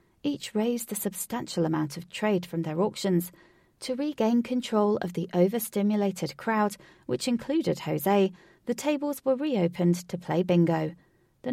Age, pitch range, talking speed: 30-49, 175-220 Hz, 145 wpm